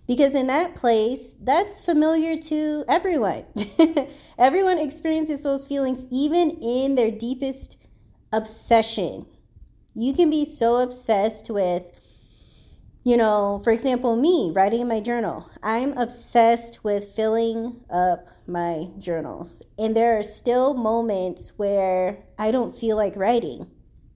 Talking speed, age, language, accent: 125 wpm, 20-39, English, American